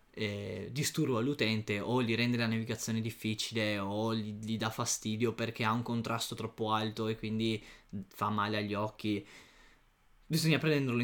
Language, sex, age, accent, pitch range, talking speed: Italian, male, 20-39, native, 110-130 Hz, 150 wpm